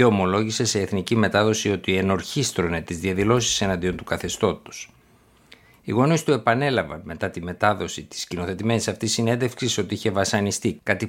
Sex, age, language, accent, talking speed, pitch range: male, 60-79, Greek, native, 145 wpm, 90-110 Hz